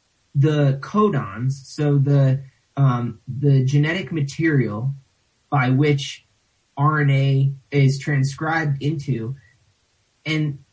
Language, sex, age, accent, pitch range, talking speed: English, male, 30-49, American, 130-160 Hz, 80 wpm